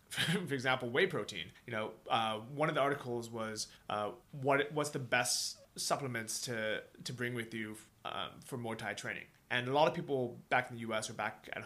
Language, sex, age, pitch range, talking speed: English, male, 20-39, 110-135 Hz, 215 wpm